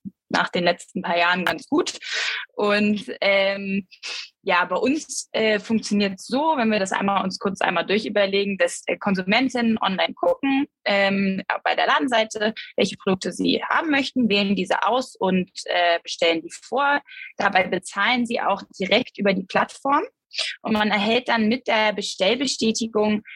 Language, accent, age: German, German, 20-39